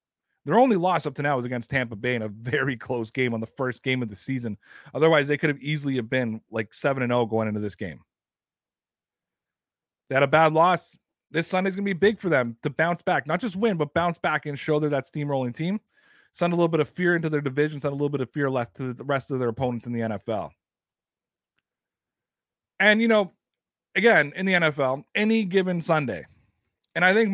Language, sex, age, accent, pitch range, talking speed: English, male, 30-49, American, 125-180 Hz, 225 wpm